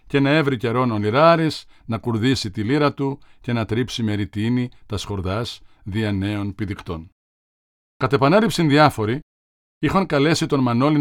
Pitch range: 105-150 Hz